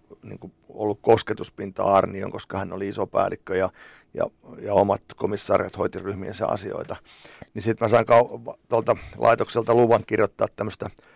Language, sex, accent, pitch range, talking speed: Finnish, male, native, 100-115 Hz, 140 wpm